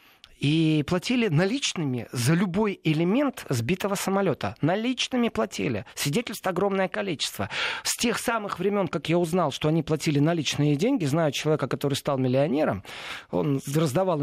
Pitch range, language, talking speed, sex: 145-205 Hz, Russian, 135 wpm, male